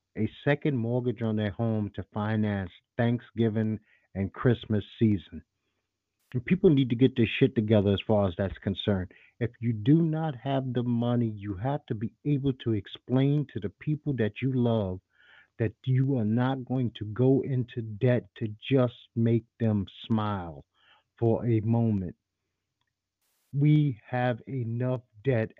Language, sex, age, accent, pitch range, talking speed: English, male, 50-69, American, 105-125 Hz, 155 wpm